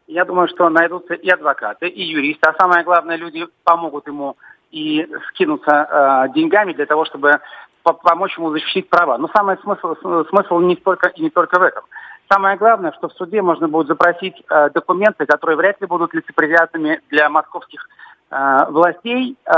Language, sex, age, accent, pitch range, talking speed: Russian, male, 40-59, native, 155-190 Hz, 155 wpm